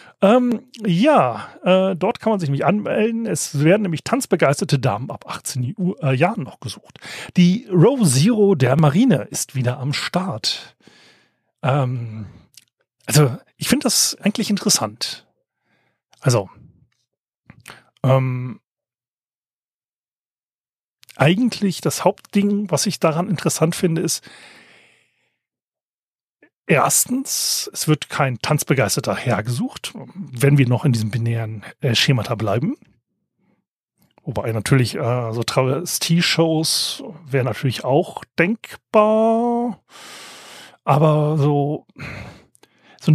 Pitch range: 135-205 Hz